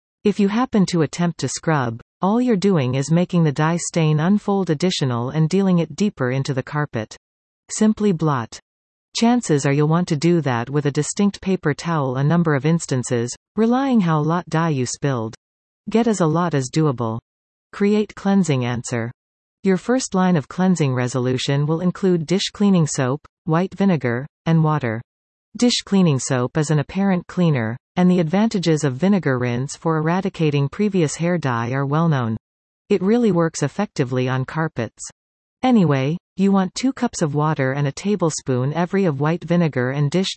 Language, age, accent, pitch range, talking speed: English, 40-59, American, 135-185 Hz, 170 wpm